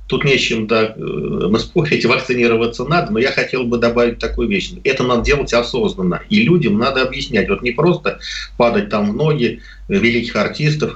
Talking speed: 170 wpm